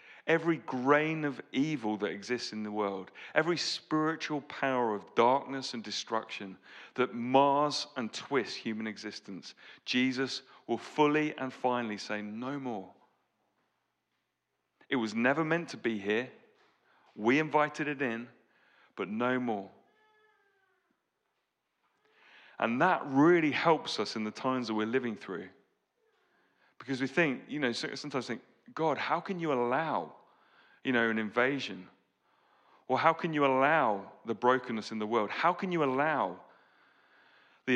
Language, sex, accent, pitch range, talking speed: English, male, British, 120-165 Hz, 140 wpm